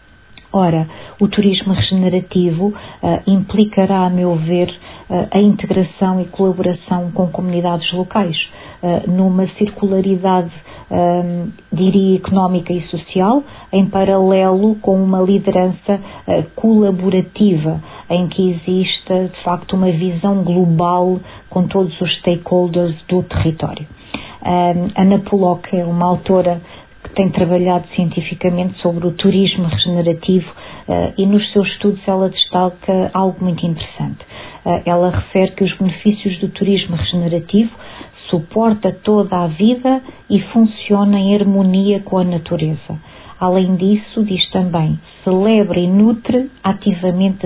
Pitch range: 175-195 Hz